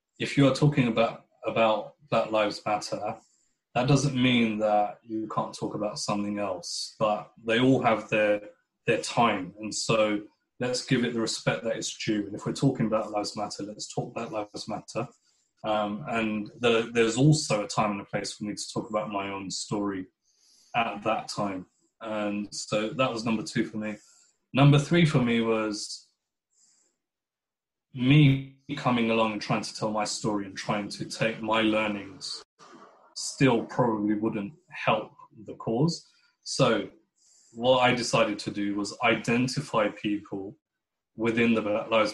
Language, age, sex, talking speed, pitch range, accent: English, 20-39, male, 165 wpm, 105-125 Hz, British